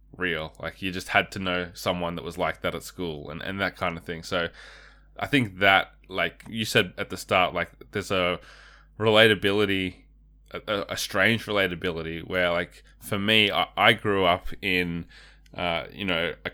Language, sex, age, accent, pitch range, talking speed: English, male, 20-39, Australian, 85-100 Hz, 185 wpm